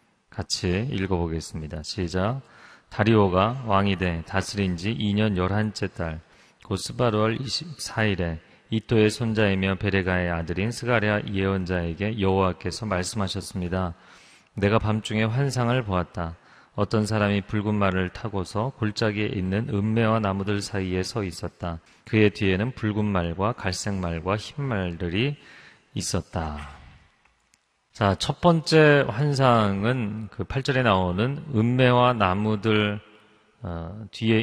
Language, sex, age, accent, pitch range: Korean, male, 30-49, native, 95-115 Hz